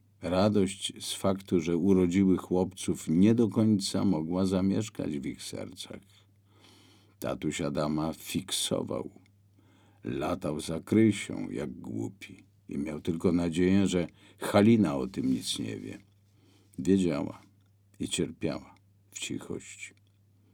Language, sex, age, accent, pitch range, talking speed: Polish, male, 50-69, native, 90-100 Hz, 110 wpm